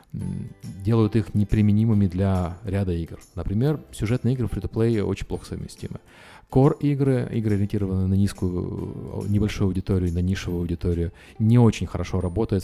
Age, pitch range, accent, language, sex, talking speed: 30-49, 90-115 Hz, native, Russian, male, 135 wpm